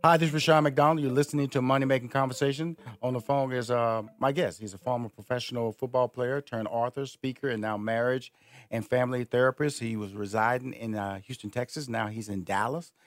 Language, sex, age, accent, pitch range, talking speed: English, male, 40-59, American, 110-135 Hz, 200 wpm